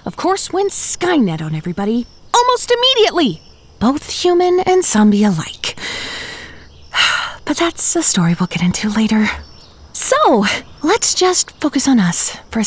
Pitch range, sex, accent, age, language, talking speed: 205-335 Hz, female, American, 30-49, English, 135 wpm